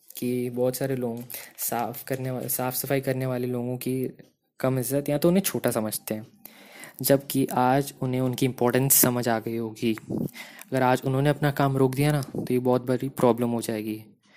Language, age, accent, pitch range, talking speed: Hindi, 20-39, native, 120-140 Hz, 190 wpm